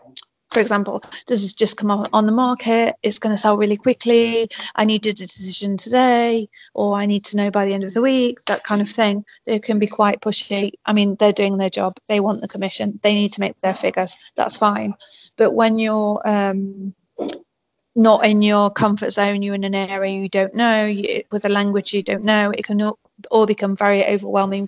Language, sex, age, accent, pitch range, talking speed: English, female, 30-49, British, 200-215 Hz, 210 wpm